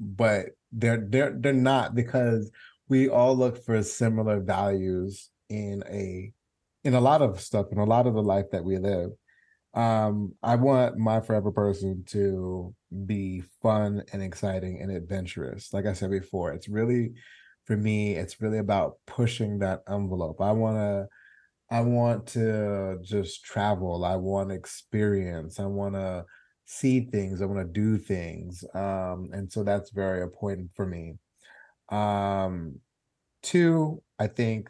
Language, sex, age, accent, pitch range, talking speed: English, male, 30-49, American, 95-115 Hz, 150 wpm